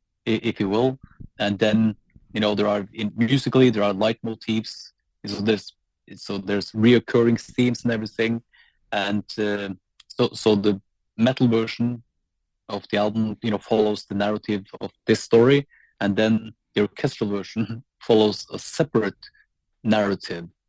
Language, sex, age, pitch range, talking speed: English, male, 30-49, 100-115 Hz, 145 wpm